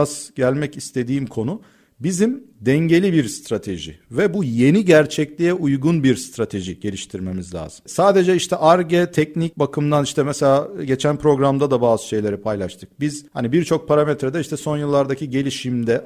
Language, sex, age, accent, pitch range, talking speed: Turkish, male, 40-59, native, 115-160 Hz, 140 wpm